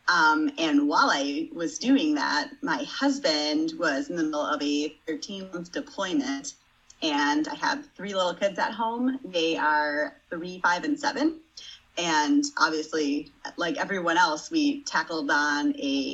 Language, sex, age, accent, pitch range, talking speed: English, female, 30-49, American, 185-300 Hz, 150 wpm